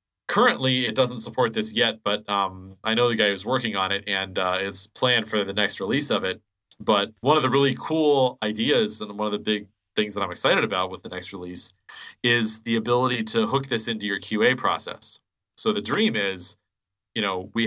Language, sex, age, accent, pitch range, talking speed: English, male, 30-49, American, 100-120 Hz, 215 wpm